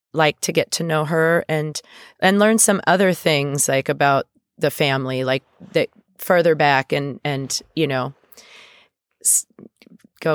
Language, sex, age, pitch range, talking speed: English, female, 30-49, 135-160 Hz, 145 wpm